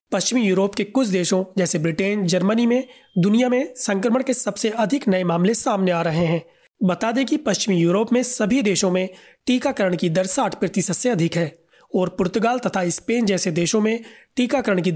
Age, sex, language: 30-49, male, Hindi